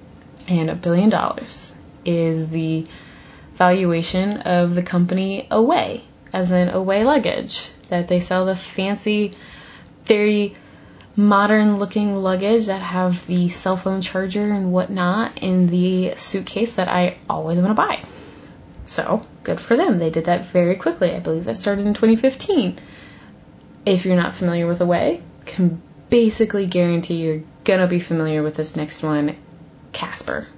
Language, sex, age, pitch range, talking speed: English, female, 20-39, 175-210 Hz, 145 wpm